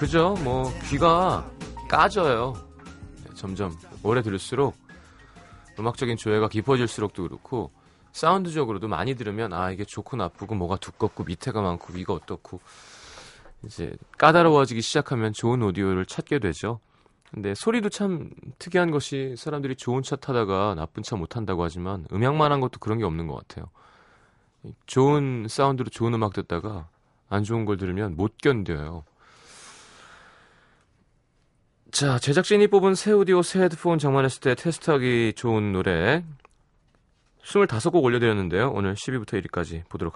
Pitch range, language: 100-140 Hz, Korean